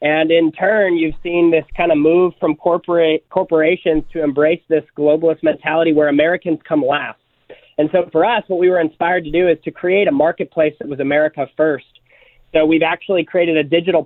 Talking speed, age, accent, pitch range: 195 wpm, 30-49, American, 150-165 Hz